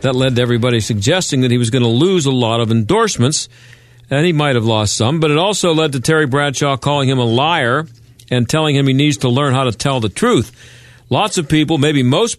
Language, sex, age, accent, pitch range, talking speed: English, male, 50-69, American, 120-165 Hz, 235 wpm